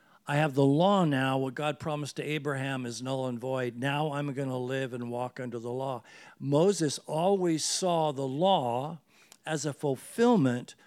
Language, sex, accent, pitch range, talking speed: English, male, American, 135-170 Hz, 175 wpm